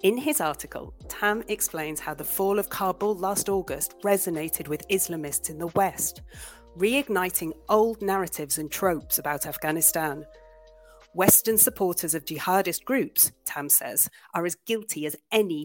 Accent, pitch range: British, 160-210 Hz